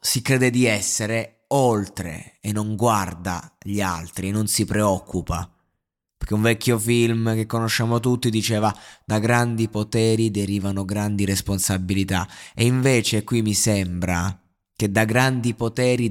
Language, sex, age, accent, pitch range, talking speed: Italian, male, 20-39, native, 100-120 Hz, 135 wpm